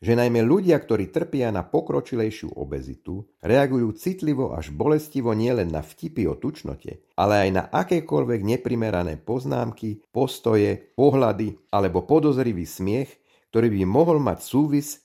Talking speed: 130 wpm